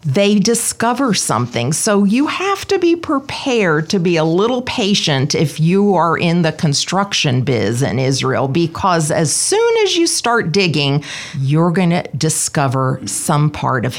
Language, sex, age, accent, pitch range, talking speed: English, female, 40-59, American, 140-170 Hz, 155 wpm